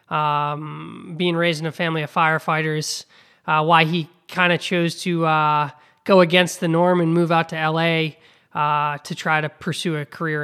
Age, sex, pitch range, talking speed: 20-39, male, 150-180 Hz, 185 wpm